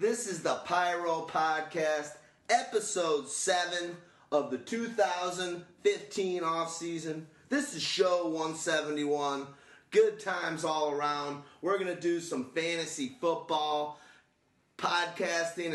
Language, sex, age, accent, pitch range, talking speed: English, male, 30-49, American, 145-170 Hz, 105 wpm